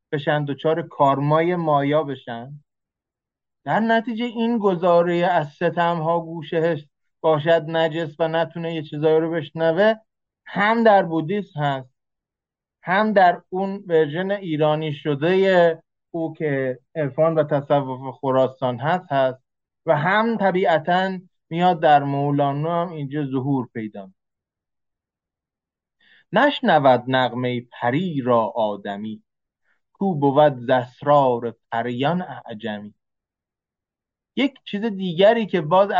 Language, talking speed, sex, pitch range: Persian, 105 wpm, male, 140-180 Hz